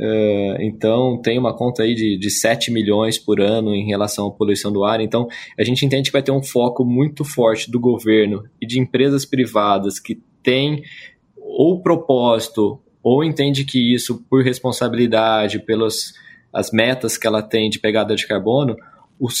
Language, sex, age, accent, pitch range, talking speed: Portuguese, male, 20-39, Brazilian, 110-140 Hz, 175 wpm